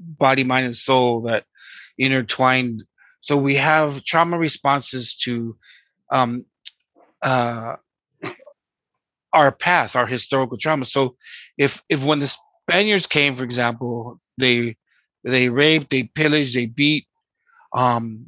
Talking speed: 120 wpm